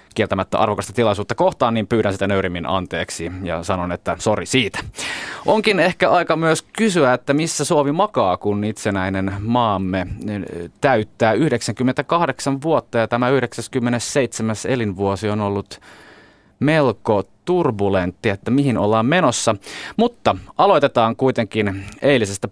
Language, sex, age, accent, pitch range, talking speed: Finnish, male, 30-49, native, 100-130 Hz, 120 wpm